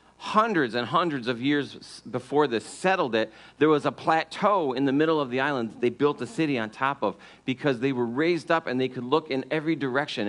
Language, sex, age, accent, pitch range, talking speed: English, male, 50-69, American, 105-170 Hz, 225 wpm